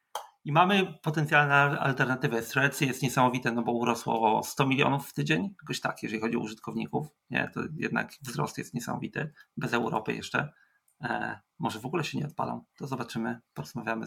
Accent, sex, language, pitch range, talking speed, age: native, male, Polish, 115-140 Hz, 170 wpm, 30-49